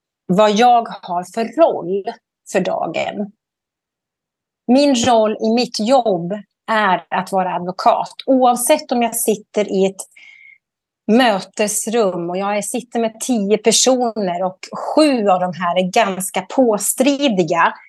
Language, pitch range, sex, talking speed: Swedish, 190-255 Hz, female, 125 wpm